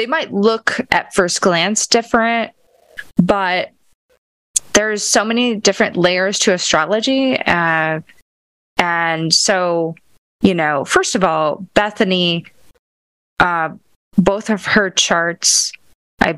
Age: 20-39